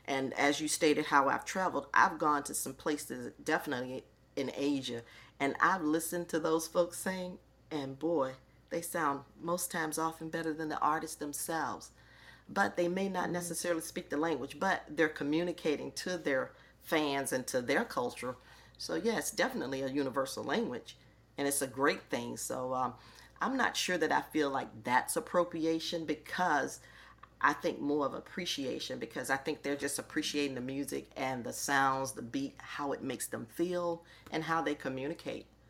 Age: 40-59